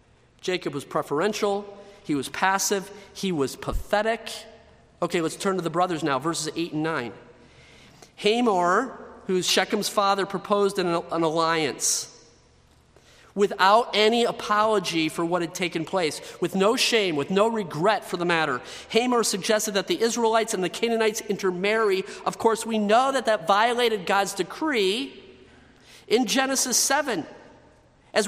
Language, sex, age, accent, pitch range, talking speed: English, male, 40-59, American, 175-225 Hz, 140 wpm